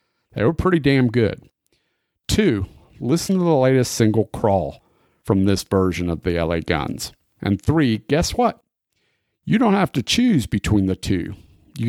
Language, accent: English, American